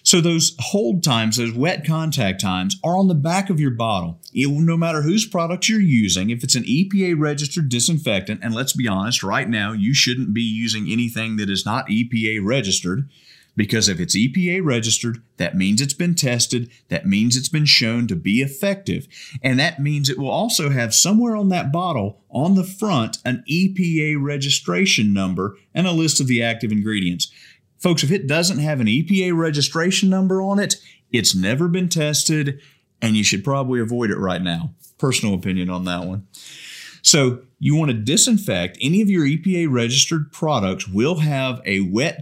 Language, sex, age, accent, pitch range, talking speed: English, male, 40-59, American, 115-170 Hz, 185 wpm